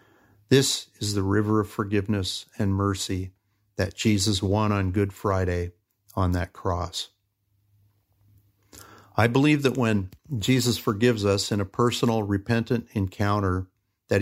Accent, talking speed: American, 125 wpm